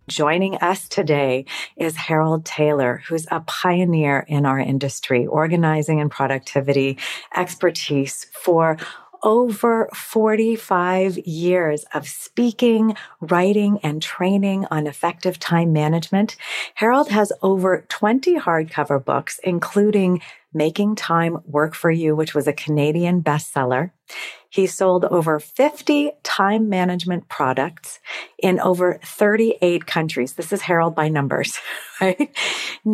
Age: 40-59